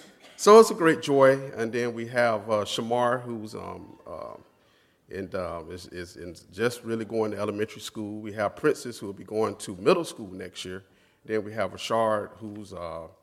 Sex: male